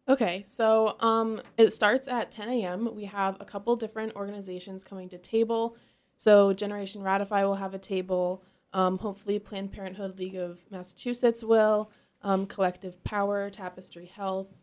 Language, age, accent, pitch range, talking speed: English, 20-39, American, 185-215 Hz, 150 wpm